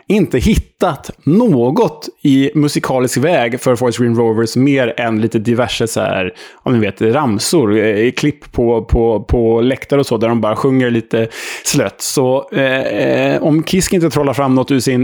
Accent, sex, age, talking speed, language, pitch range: Norwegian, male, 20-39, 165 wpm, Swedish, 115-140 Hz